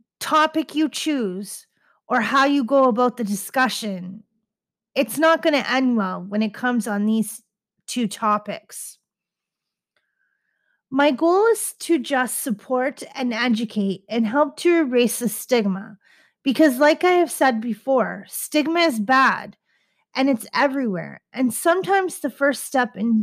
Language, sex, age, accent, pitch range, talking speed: English, female, 30-49, American, 215-295 Hz, 140 wpm